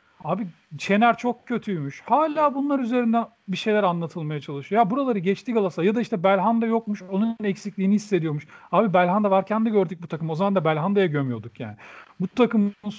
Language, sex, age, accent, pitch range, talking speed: Turkish, male, 40-59, native, 185-240 Hz, 175 wpm